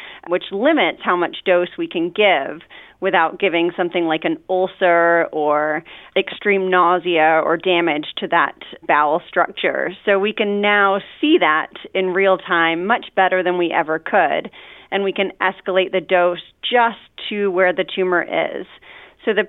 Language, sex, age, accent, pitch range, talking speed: English, female, 30-49, American, 180-215 Hz, 160 wpm